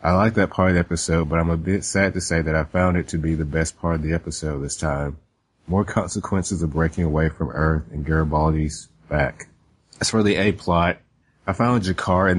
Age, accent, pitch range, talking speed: 30-49, American, 80-90 Hz, 230 wpm